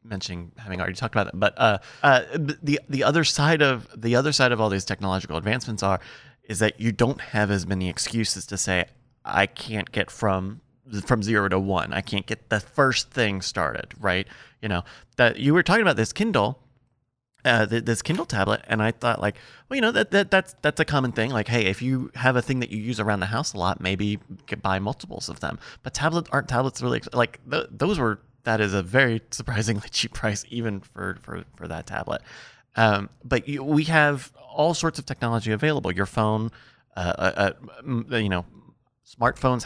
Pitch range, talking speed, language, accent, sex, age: 100-130 Hz, 205 wpm, English, American, male, 30-49